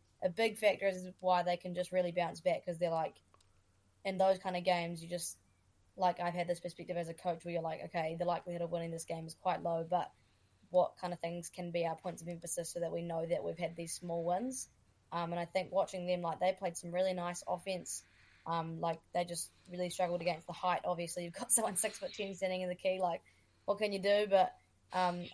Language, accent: English, Australian